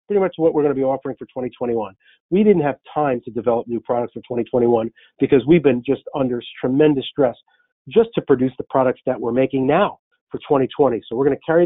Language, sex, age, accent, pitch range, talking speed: English, male, 40-59, American, 130-160 Hz, 215 wpm